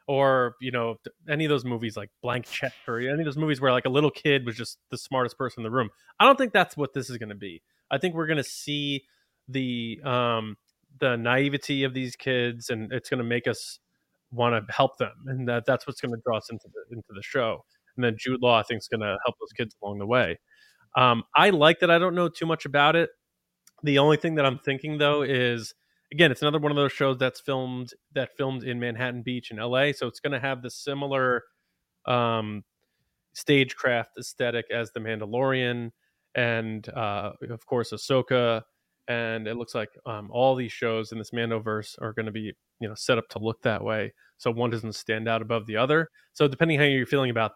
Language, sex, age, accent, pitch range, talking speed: English, male, 20-39, American, 115-145 Hz, 220 wpm